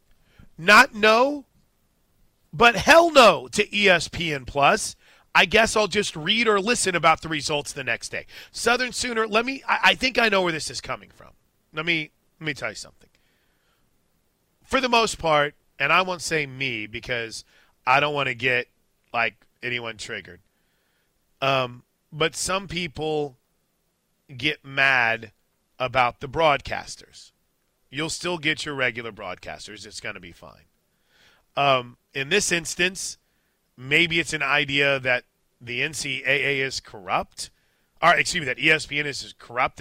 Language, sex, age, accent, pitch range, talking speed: English, male, 30-49, American, 125-170 Hz, 150 wpm